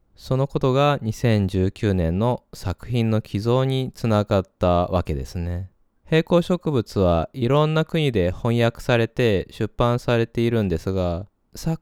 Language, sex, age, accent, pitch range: Japanese, male, 20-39, native, 100-130 Hz